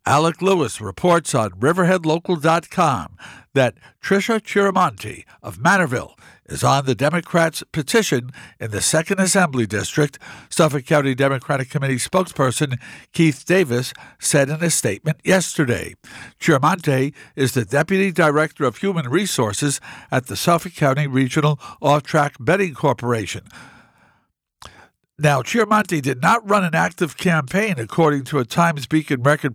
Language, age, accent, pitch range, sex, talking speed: English, 60-79, American, 130-170 Hz, male, 125 wpm